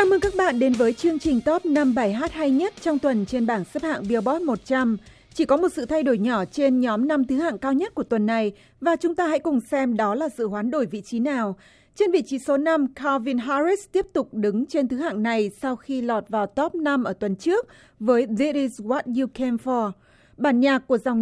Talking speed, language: 245 wpm, Vietnamese